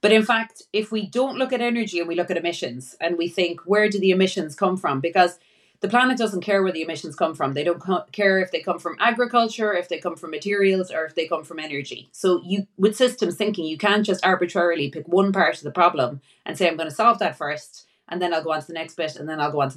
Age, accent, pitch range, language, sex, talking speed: 30-49, Irish, 170-215 Hz, English, female, 270 wpm